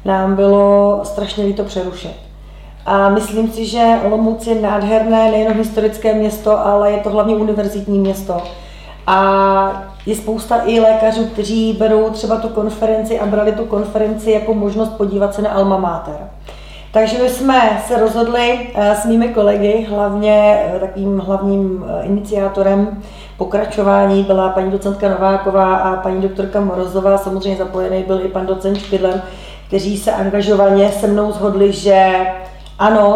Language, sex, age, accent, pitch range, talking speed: Czech, female, 30-49, native, 195-215 Hz, 140 wpm